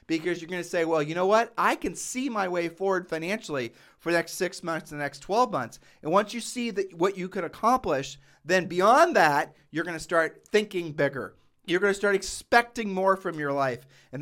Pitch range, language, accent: 145-175 Hz, English, American